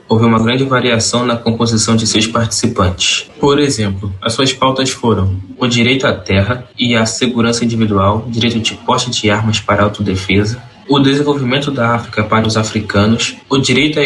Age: 20-39